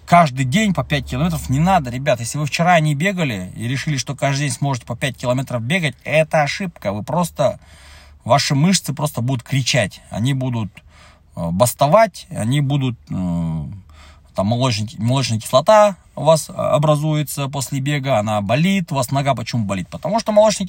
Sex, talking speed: male, 160 wpm